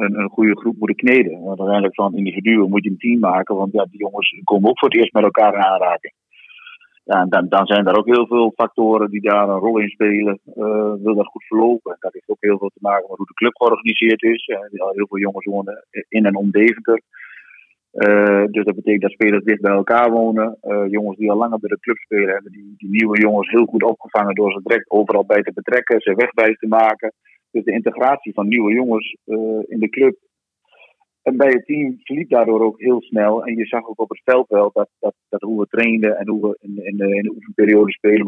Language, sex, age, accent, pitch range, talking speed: Dutch, male, 40-59, Dutch, 100-115 Hz, 240 wpm